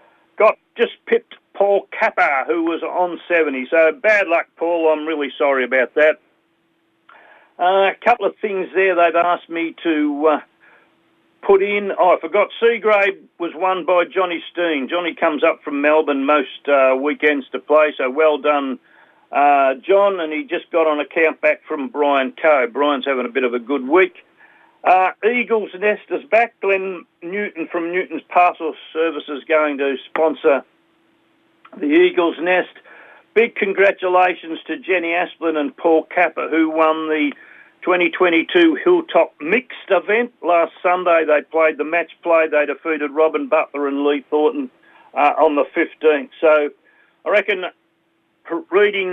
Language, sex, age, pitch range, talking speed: English, male, 50-69, 150-190 Hz, 155 wpm